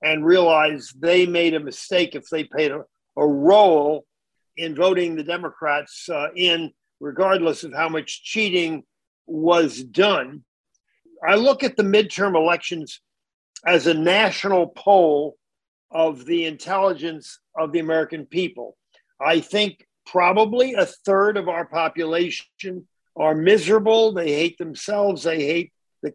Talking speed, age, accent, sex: 135 wpm, 50-69, American, male